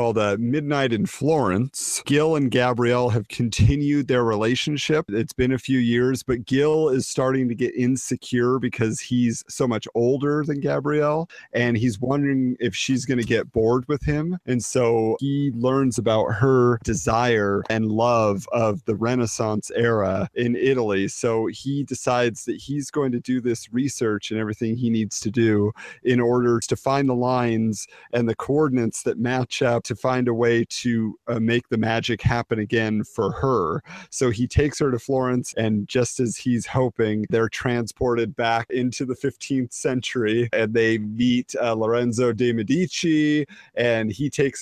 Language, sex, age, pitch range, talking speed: English, male, 40-59, 115-135 Hz, 170 wpm